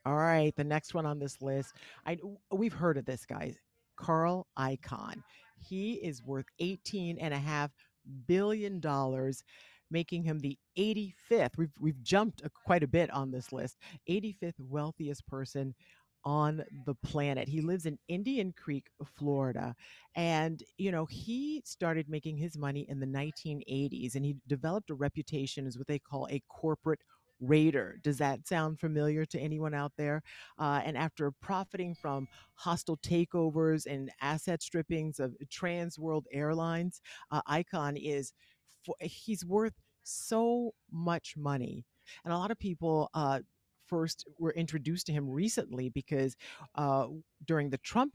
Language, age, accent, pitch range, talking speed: English, 40-59, American, 135-165 Hz, 155 wpm